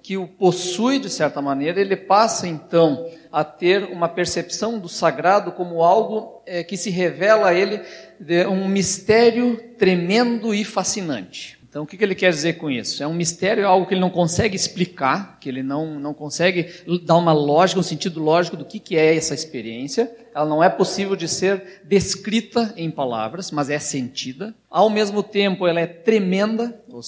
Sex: male